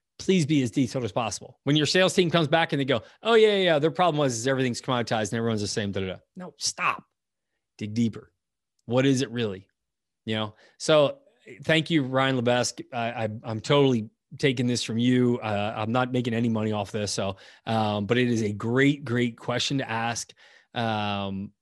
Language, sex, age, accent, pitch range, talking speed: English, male, 20-39, American, 115-155 Hz, 210 wpm